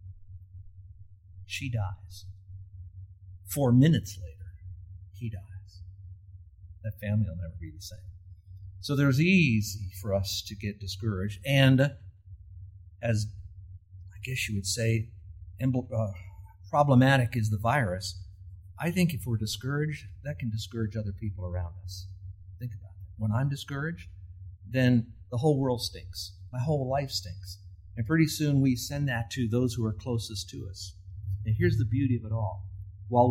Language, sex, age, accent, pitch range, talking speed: English, male, 50-69, American, 95-120 Hz, 150 wpm